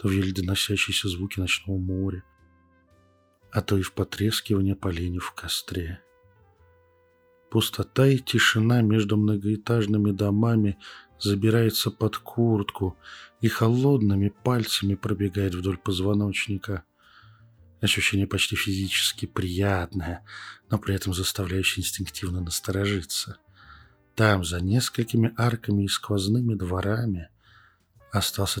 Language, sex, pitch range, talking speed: Russian, male, 95-110 Hz, 100 wpm